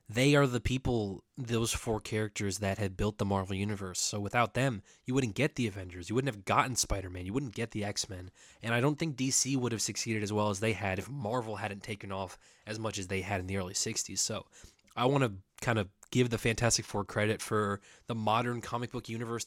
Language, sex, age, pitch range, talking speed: English, male, 20-39, 100-125 Hz, 230 wpm